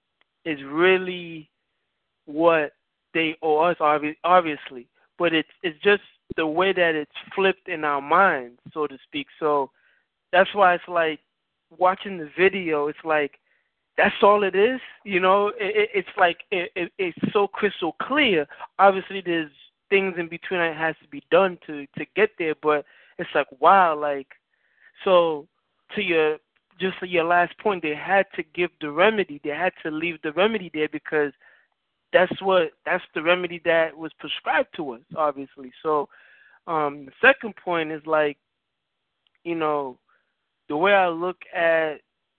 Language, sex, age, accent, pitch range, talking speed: English, male, 20-39, American, 150-185 Hz, 160 wpm